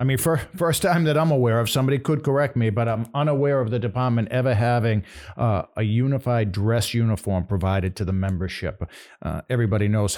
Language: English